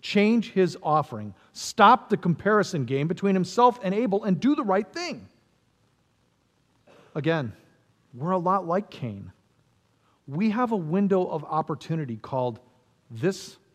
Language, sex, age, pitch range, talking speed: English, male, 40-59, 150-225 Hz, 130 wpm